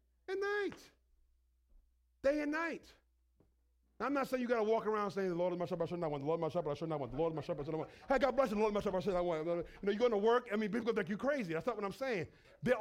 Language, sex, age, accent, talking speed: English, male, 40-59, American, 350 wpm